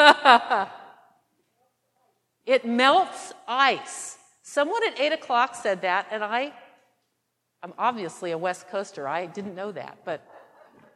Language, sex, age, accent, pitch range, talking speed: English, female, 50-69, American, 210-275 Hz, 115 wpm